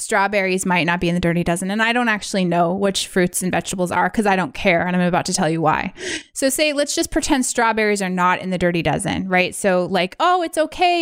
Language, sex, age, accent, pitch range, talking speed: English, female, 20-39, American, 200-270 Hz, 255 wpm